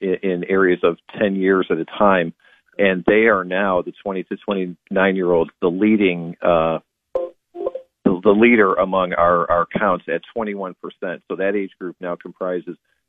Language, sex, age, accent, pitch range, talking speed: English, male, 40-59, American, 90-105 Hz, 160 wpm